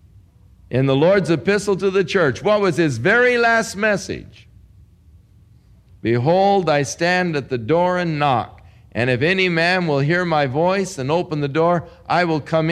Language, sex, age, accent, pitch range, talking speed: English, male, 50-69, American, 100-160 Hz, 170 wpm